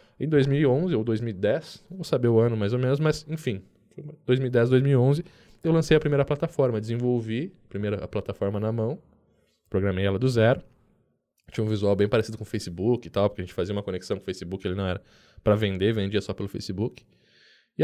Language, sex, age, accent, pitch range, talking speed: Portuguese, male, 10-29, Brazilian, 100-125 Hz, 200 wpm